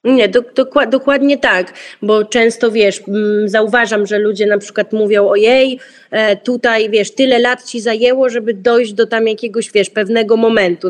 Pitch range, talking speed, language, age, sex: 210-240 Hz, 150 wpm, Polish, 20-39, female